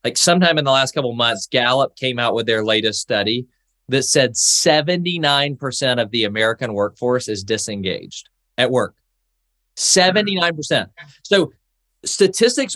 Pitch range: 130-180 Hz